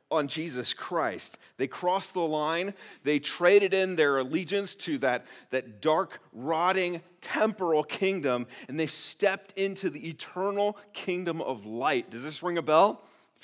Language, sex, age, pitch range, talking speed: English, male, 40-59, 135-200 Hz, 150 wpm